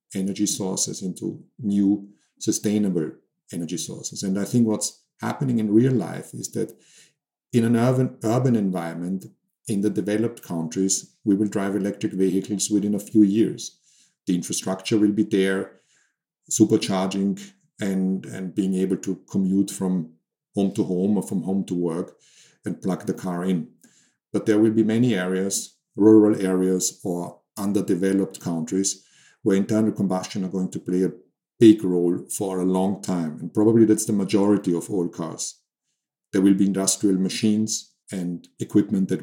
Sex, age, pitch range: male, 50-69, 95-105 Hz